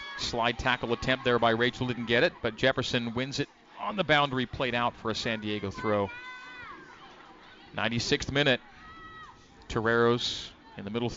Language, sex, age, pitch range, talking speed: English, male, 40-59, 115-130 Hz, 155 wpm